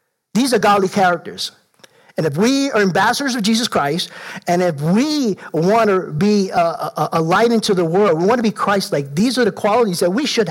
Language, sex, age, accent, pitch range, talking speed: English, male, 50-69, American, 180-225 Hz, 210 wpm